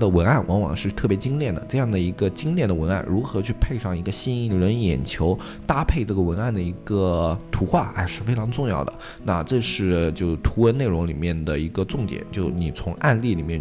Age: 20-39